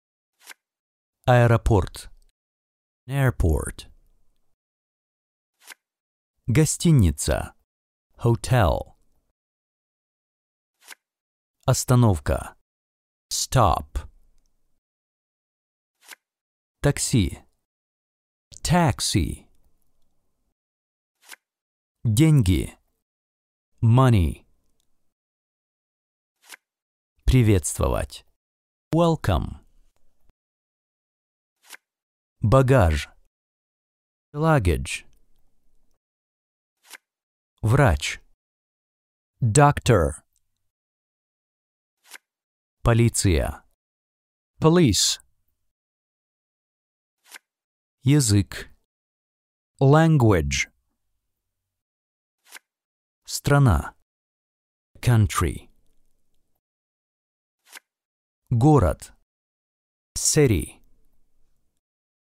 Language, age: Russian, 50-69